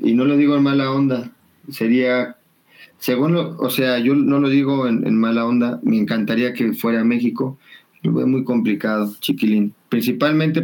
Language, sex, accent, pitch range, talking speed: Spanish, male, Mexican, 125-155 Hz, 175 wpm